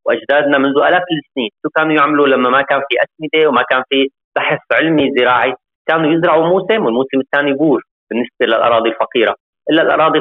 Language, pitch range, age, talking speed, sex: Arabic, 130-155 Hz, 30-49, 170 wpm, male